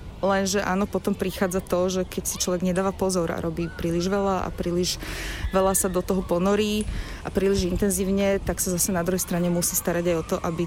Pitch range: 175-210 Hz